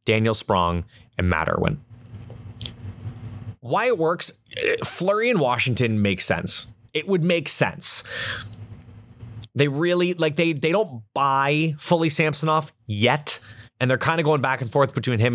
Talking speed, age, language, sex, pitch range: 150 wpm, 20-39, English, male, 110-150 Hz